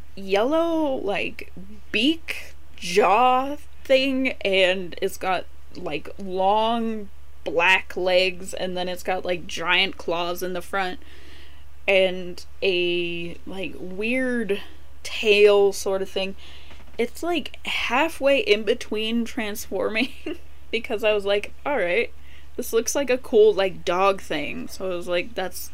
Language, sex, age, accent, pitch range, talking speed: English, female, 10-29, American, 170-230 Hz, 130 wpm